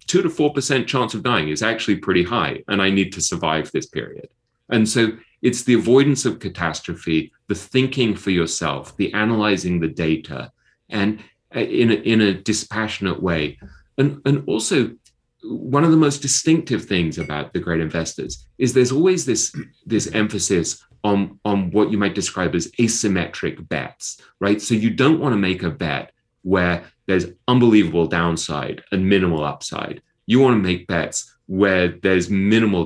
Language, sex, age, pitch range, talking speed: English, male, 30-49, 85-120 Hz, 165 wpm